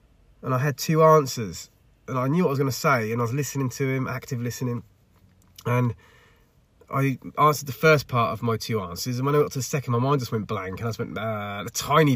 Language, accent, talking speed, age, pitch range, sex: English, British, 255 wpm, 20-39, 120-165 Hz, male